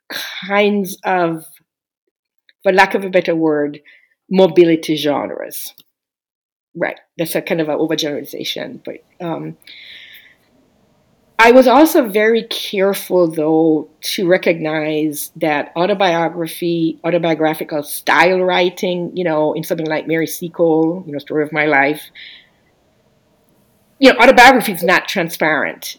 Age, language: 40-59, English